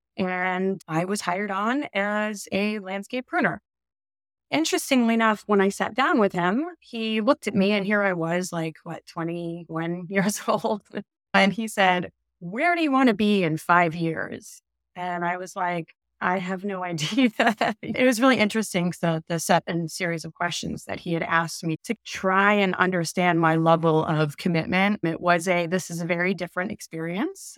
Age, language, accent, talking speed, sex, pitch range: 30-49, English, American, 185 wpm, female, 170-210 Hz